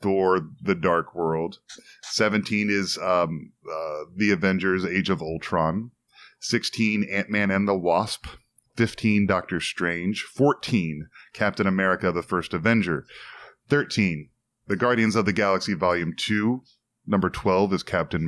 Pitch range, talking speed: 90-110 Hz, 130 wpm